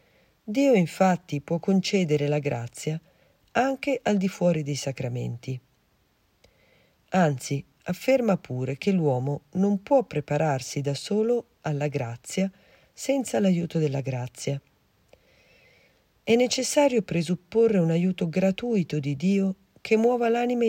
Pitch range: 145-205 Hz